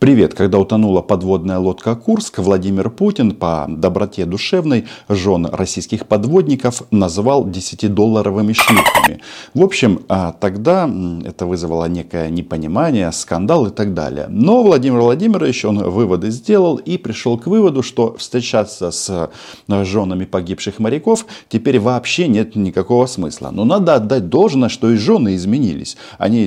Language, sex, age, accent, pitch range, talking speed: Russian, male, 40-59, native, 90-115 Hz, 130 wpm